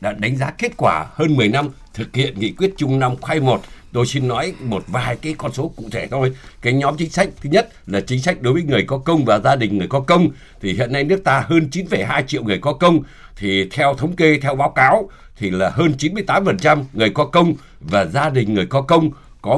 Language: Vietnamese